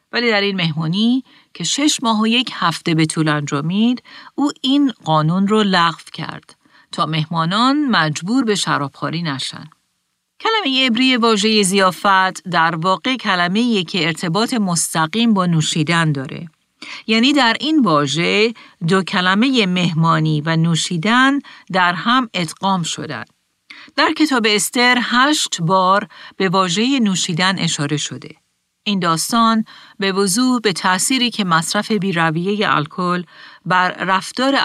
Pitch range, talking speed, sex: 165-235 Hz, 130 wpm, female